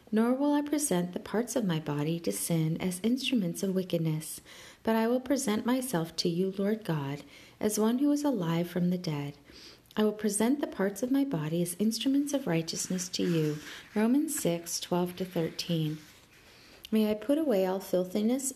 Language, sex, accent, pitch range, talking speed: English, female, American, 170-230 Hz, 185 wpm